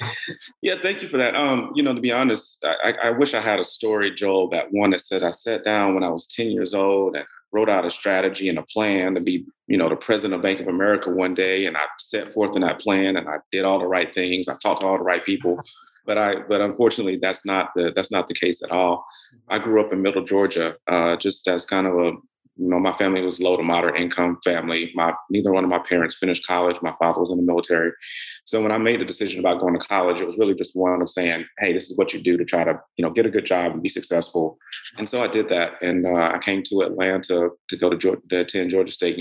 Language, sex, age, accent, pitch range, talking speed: English, male, 30-49, American, 85-100 Hz, 265 wpm